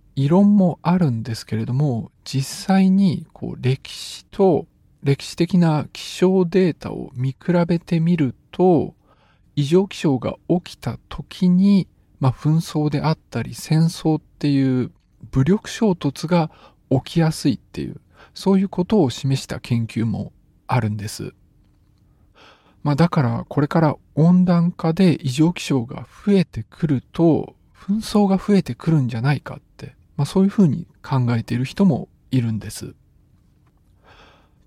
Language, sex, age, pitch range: Japanese, male, 50-69, 125-175 Hz